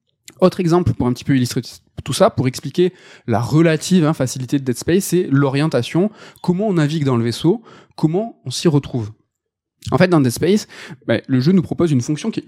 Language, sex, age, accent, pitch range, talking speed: French, male, 20-39, French, 125-175 Hz, 210 wpm